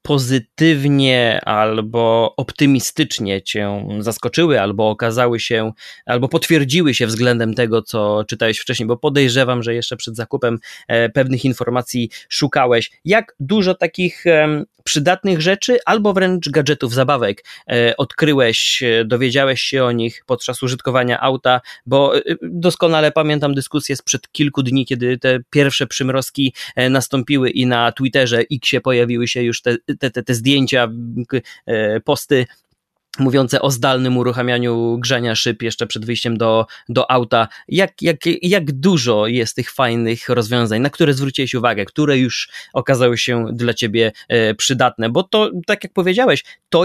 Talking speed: 135 wpm